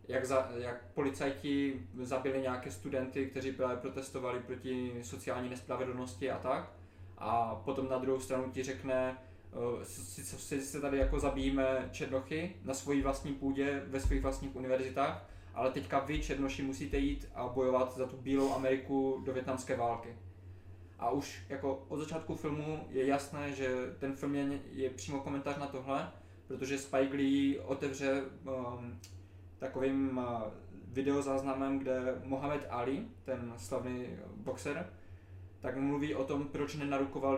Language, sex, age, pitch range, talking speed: Czech, male, 20-39, 120-135 Hz, 145 wpm